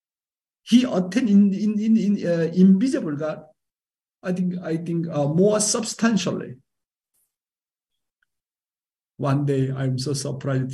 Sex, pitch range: male, 130-155 Hz